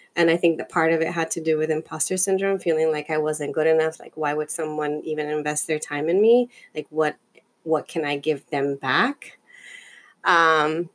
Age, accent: 20-39, American